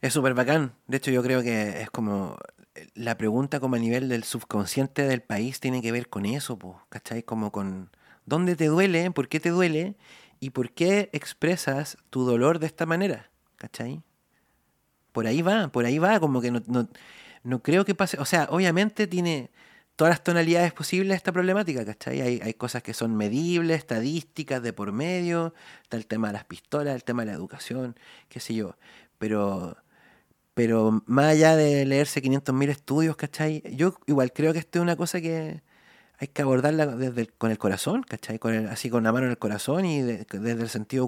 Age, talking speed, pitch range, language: 30-49, 195 wpm, 115-160 Hz, Spanish